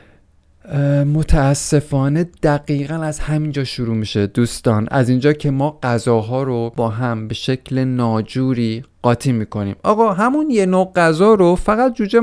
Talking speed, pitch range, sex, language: 140 wpm, 120-180 Hz, male, Persian